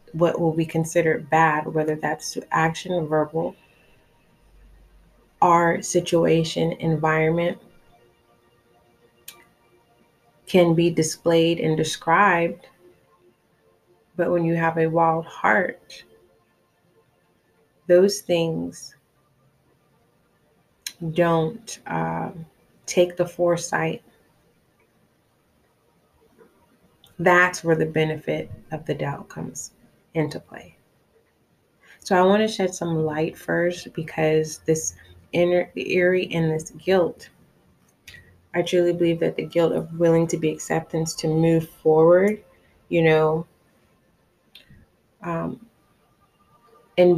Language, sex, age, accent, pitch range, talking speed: English, female, 30-49, American, 155-175 Hz, 95 wpm